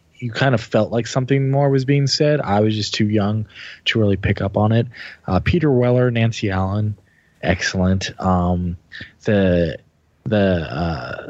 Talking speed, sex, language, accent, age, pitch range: 165 wpm, male, English, American, 20-39, 95-115 Hz